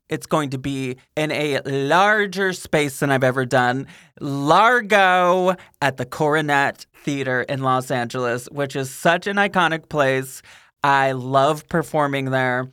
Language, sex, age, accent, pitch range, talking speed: English, male, 20-39, American, 135-190 Hz, 140 wpm